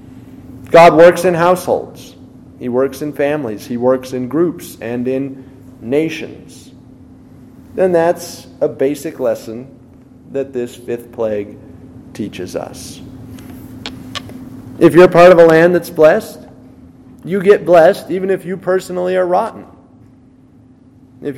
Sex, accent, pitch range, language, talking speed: male, American, 130-175 Hz, English, 125 wpm